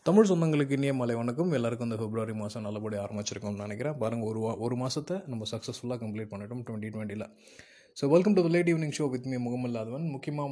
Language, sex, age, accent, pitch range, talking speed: Tamil, male, 20-39, native, 110-130 Hz, 195 wpm